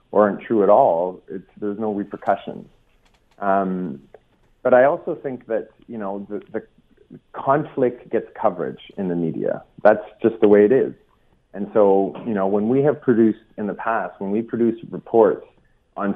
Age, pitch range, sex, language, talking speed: 40-59, 95-115 Hz, male, English, 175 wpm